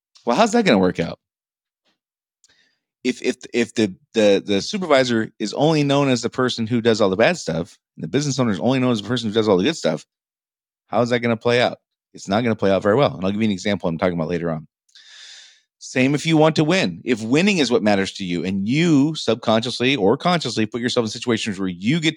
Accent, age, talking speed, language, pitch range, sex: American, 40-59, 250 wpm, English, 95-125 Hz, male